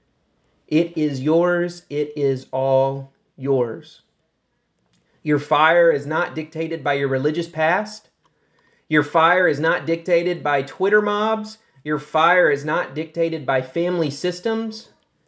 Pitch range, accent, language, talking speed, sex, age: 145-175 Hz, American, English, 125 wpm, male, 30-49